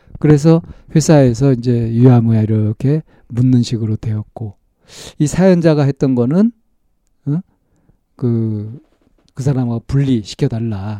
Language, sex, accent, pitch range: Korean, male, native, 110-145 Hz